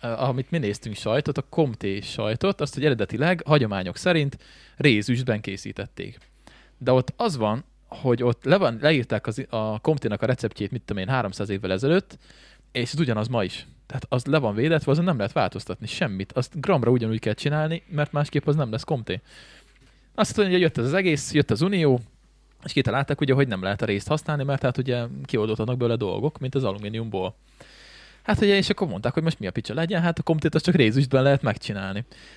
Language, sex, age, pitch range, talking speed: Hungarian, male, 20-39, 105-145 Hz, 190 wpm